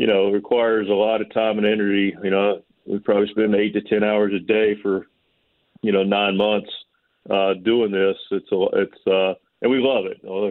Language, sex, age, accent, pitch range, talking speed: English, male, 40-59, American, 95-105 Hz, 215 wpm